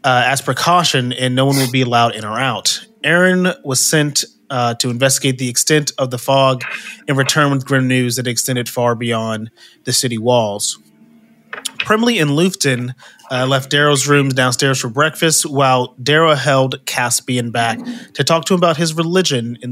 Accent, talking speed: American, 175 wpm